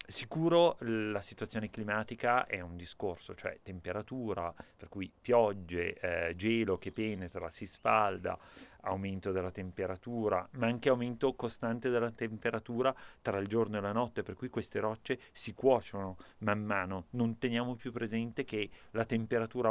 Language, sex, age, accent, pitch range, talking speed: Italian, male, 30-49, native, 95-125 Hz, 145 wpm